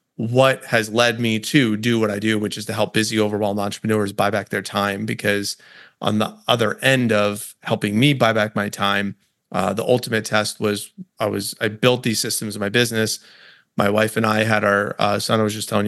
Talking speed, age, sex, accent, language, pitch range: 220 wpm, 30-49, male, American, English, 105-115 Hz